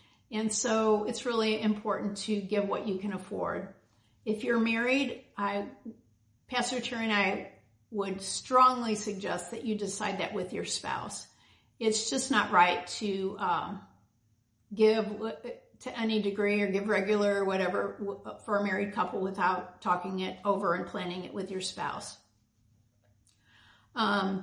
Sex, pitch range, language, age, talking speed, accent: female, 195-235 Hz, English, 50-69, 145 wpm, American